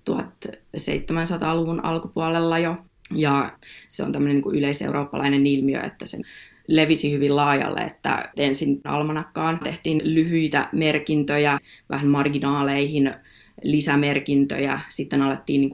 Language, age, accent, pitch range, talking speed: Finnish, 20-39, native, 145-165 Hz, 95 wpm